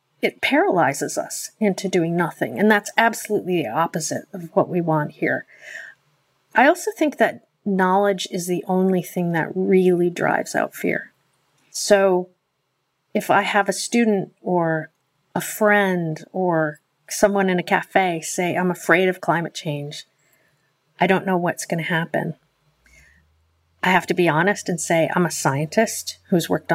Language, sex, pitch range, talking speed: English, female, 155-190 Hz, 155 wpm